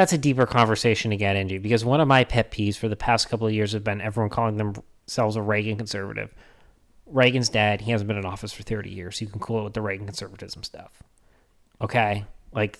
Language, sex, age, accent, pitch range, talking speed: English, male, 30-49, American, 100-120 Hz, 230 wpm